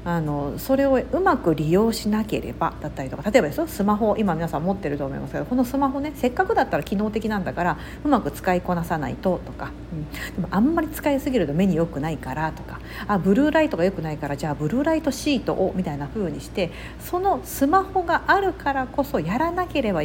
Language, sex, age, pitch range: Japanese, female, 50-69, 170-275 Hz